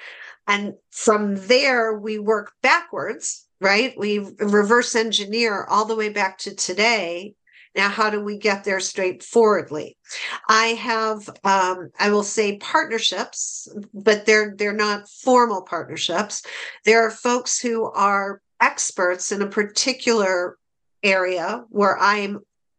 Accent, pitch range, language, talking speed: American, 190-220 Hz, English, 130 wpm